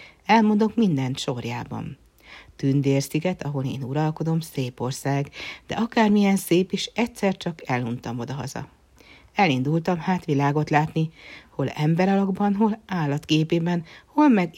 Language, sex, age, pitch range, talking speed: Hungarian, female, 60-79, 140-185 Hz, 115 wpm